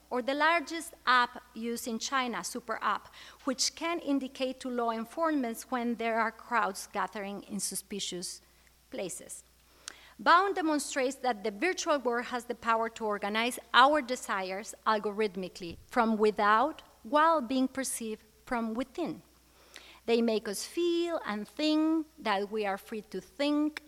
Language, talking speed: English, 140 wpm